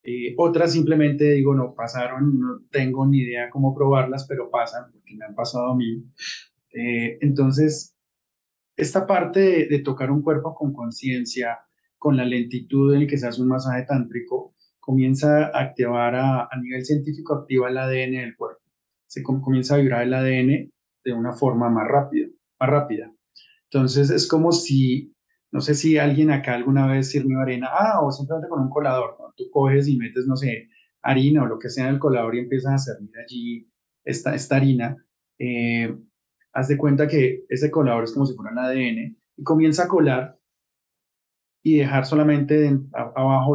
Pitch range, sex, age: 125-150 Hz, male, 30-49